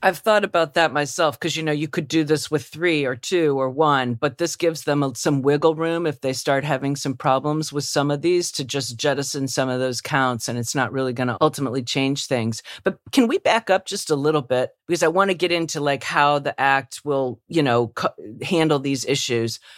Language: English